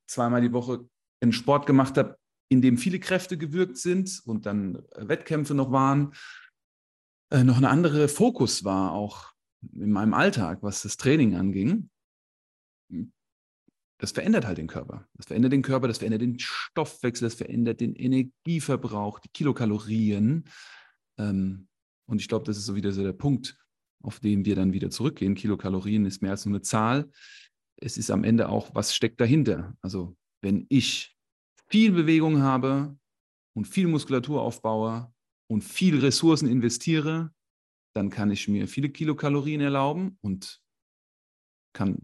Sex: male